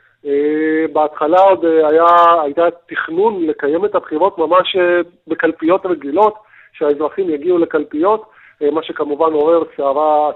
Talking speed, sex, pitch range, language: 105 wpm, male, 150-185 Hz, Hebrew